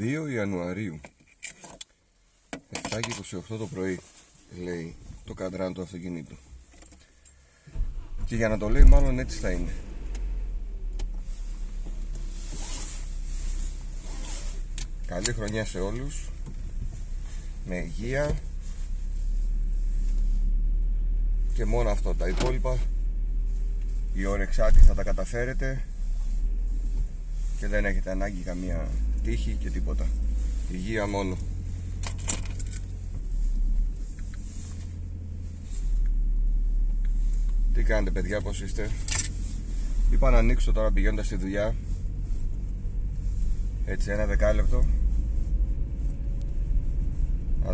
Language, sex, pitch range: Greek, male, 70-100 Hz